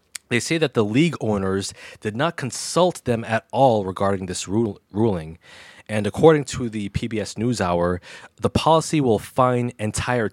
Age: 20-39